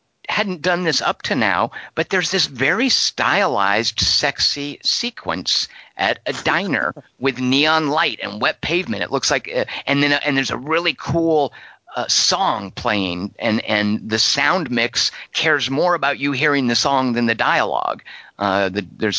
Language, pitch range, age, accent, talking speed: English, 110-145 Hz, 50-69, American, 170 wpm